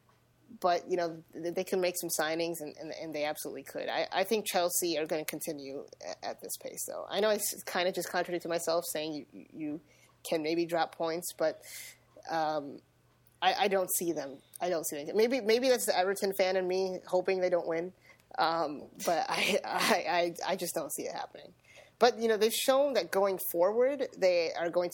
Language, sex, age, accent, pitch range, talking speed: English, female, 20-39, American, 160-195 Hz, 210 wpm